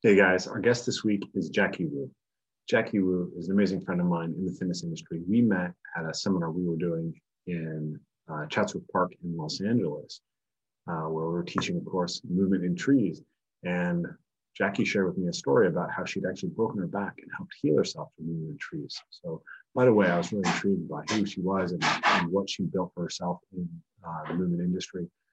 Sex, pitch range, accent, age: male, 85-100 Hz, American, 30-49